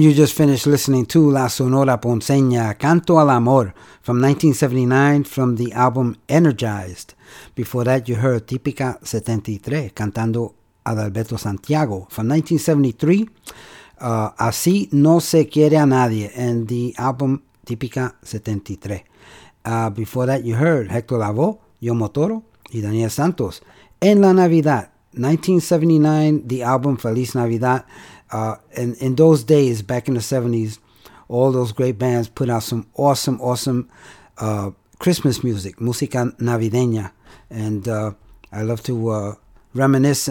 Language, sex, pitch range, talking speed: English, male, 115-150 Hz, 135 wpm